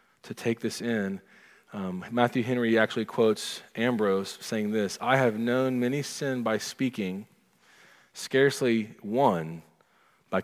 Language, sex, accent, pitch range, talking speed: English, male, American, 105-130 Hz, 125 wpm